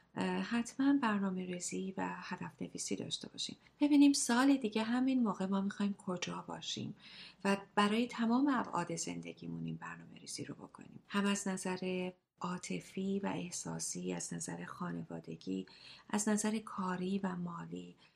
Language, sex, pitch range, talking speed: Persian, female, 180-225 Hz, 130 wpm